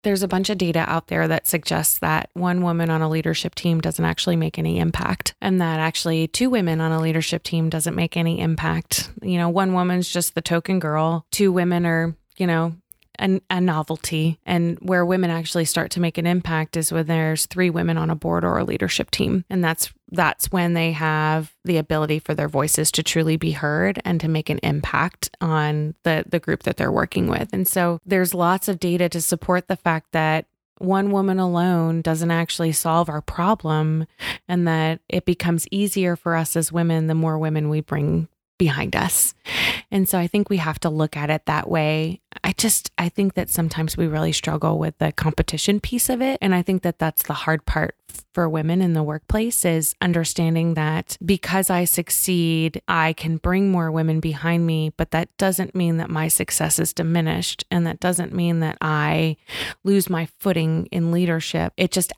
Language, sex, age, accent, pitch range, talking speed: English, female, 20-39, American, 160-180 Hz, 200 wpm